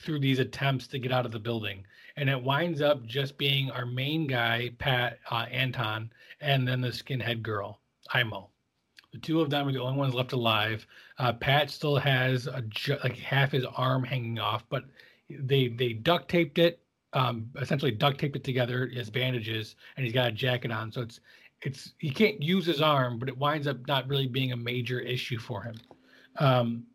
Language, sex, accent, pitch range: English, male, American, 120-145 Hz